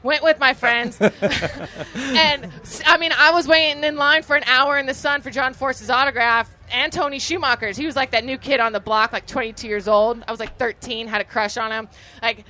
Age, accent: 20-39, American